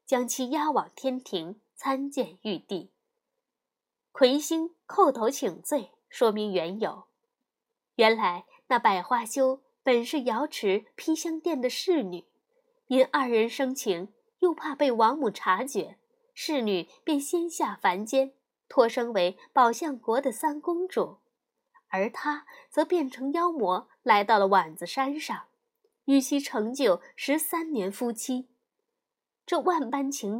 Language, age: Chinese, 20-39